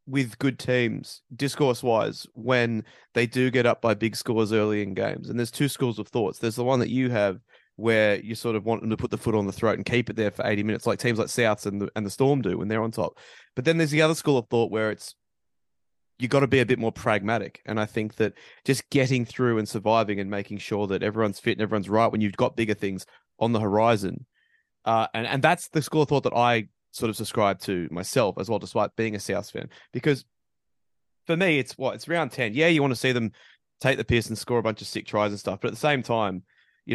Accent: Australian